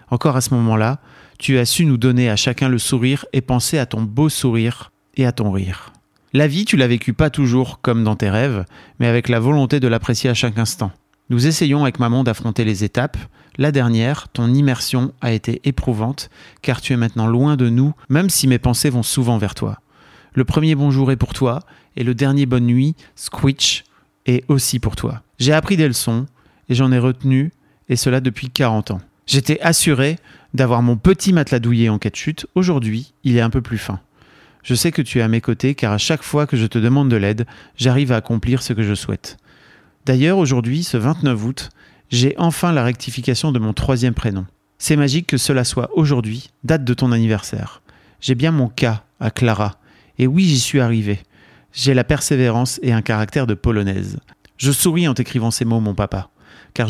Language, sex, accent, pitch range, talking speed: French, male, French, 115-140 Hz, 205 wpm